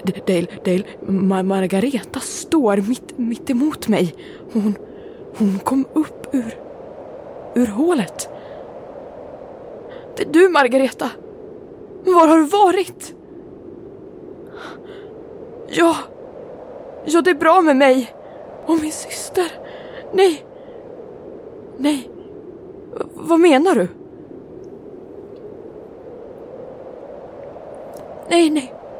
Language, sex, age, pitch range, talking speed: Swedish, female, 20-39, 320-460 Hz, 90 wpm